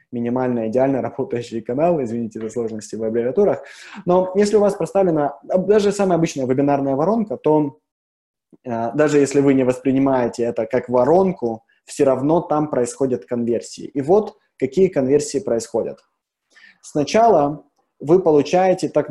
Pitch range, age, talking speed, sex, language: 125-165 Hz, 20-39, 130 wpm, male, Russian